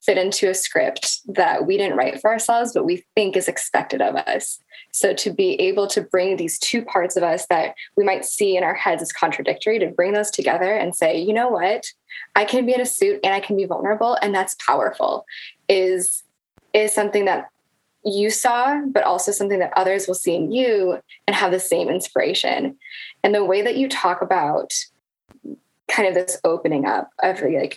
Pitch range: 185-250 Hz